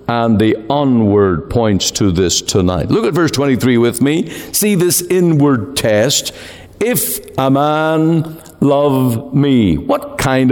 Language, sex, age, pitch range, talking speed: English, male, 60-79, 130-170 Hz, 135 wpm